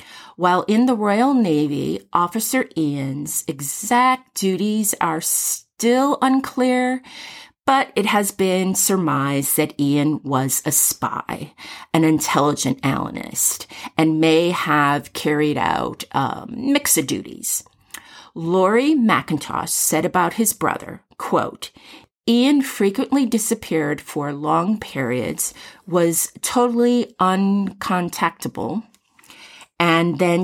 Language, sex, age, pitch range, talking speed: English, female, 40-59, 155-225 Hz, 105 wpm